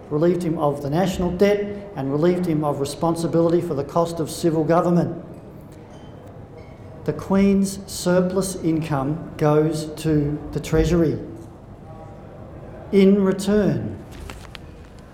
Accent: Australian